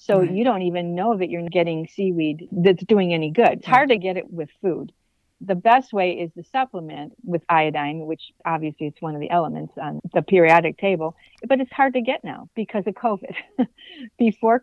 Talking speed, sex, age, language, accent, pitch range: 200 wpm, female, 50-69, English, American, 160-195 Hz